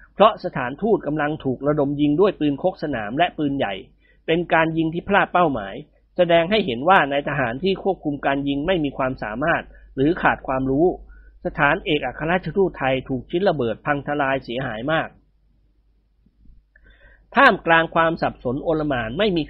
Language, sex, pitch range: Thai, male, 135-175 Hz